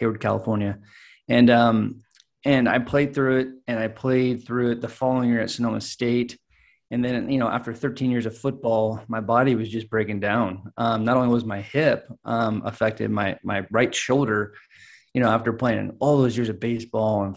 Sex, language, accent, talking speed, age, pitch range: male, English, American, 195 wpm, 20-39, 110-130 Hz